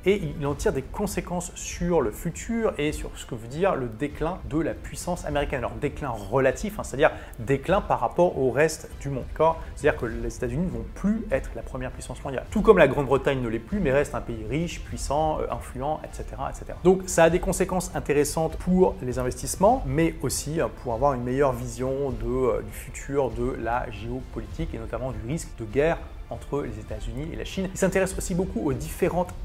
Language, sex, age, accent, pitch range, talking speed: French, male, 30-49, French, 125-175 Hz, 205 wpm